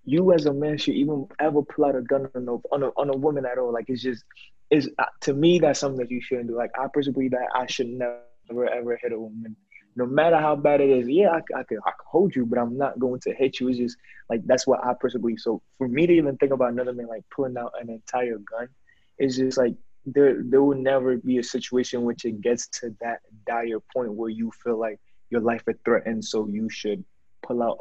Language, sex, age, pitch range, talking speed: English, male, 20-39, 115-140 Hz, 255 wpm